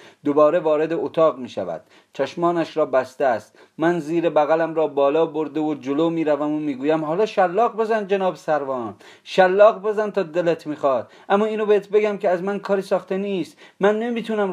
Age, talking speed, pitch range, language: 40-59, 180 wpm, 185-210 Hz, Persian